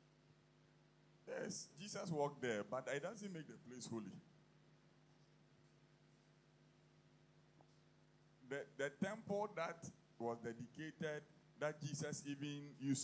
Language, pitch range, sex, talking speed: English, 115-160 Hz, male, 95 wpm